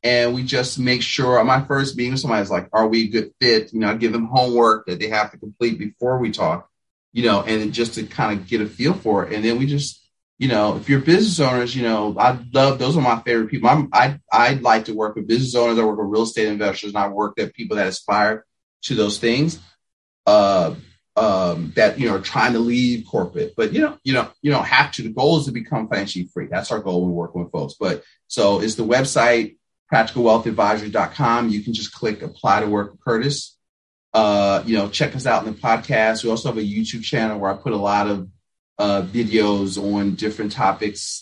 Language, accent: English, American